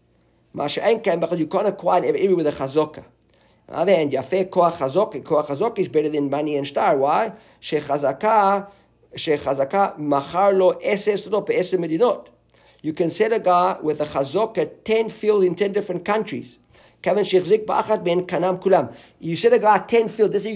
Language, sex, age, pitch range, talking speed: English, male, 50-69, 160-210 Hz, 100 wpm